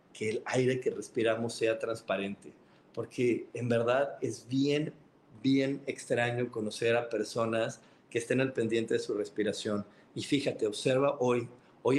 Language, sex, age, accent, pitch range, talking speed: Spanish, male, 40-59, Mexican, 115-140 Hz, 145 wpm